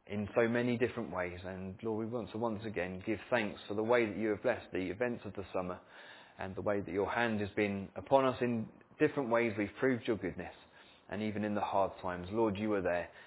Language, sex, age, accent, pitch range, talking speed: English, male, 20-39, British, 95-115 Hz, 240 wpm